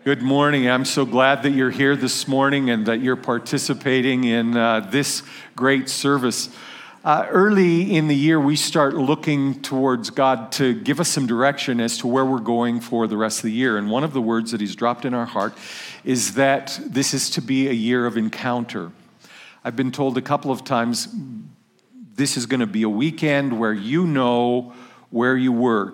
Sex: male